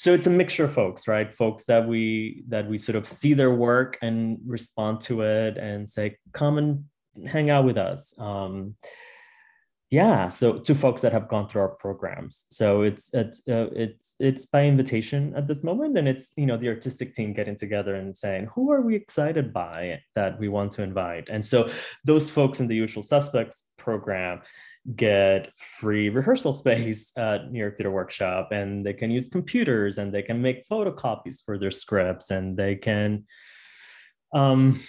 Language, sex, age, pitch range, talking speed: English, male, 20-39, 100-130 Hz, 185 wpm